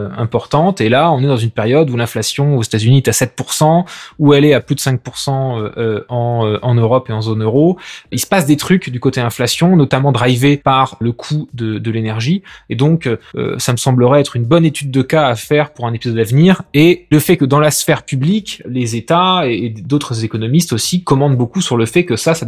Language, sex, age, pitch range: French, male, 20-39, 120-160 Hz